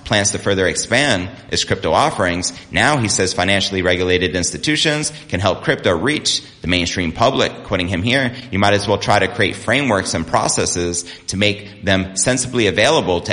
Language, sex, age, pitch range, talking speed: English, male, 30-49, 90-110 Hz, 175 wpm